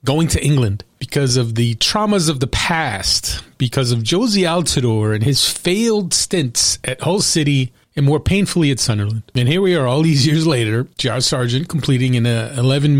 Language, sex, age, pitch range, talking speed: English, male, 30-49, 120-150 Hz, 180 wpm